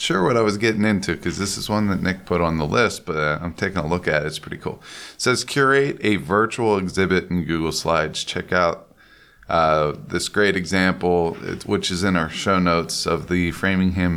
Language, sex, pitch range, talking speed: English, male, 85-95 Hz, 215 wpm